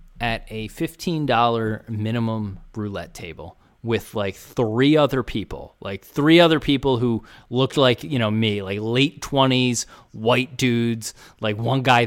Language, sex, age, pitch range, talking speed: English, male, 20-39, 105-145 Hz, 145 wpm